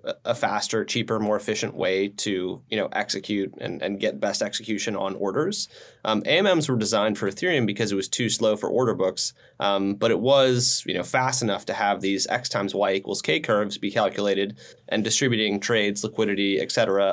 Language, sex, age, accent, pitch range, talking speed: English, male, 30-49, American, 105-130 Hz, 195 wpm